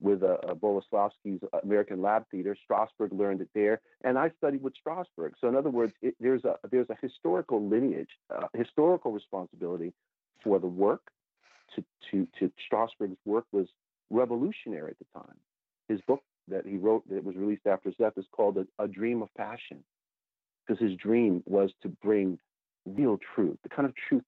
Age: 50-69